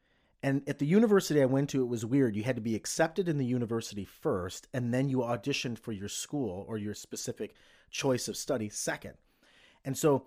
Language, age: English, 30-49